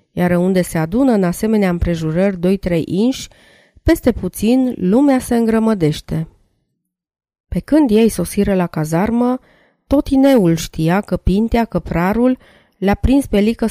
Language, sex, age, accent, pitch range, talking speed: Romanian, female, 20-39, native, 175-225 Hz, 135 wpm